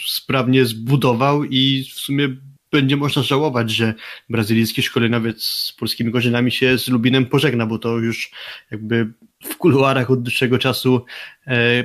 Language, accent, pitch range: Polish, native, 120-130 Hz